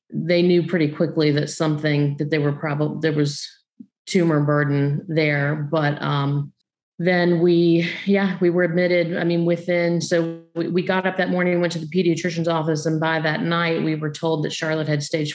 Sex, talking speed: female, 190 wpm